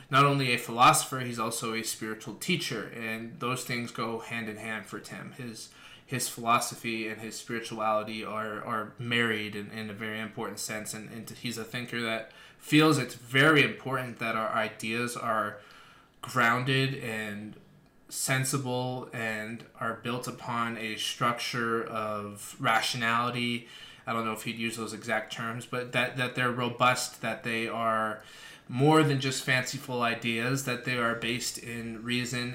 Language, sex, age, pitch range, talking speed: English, male, 20-39, 110-125 Hz, 160 wpm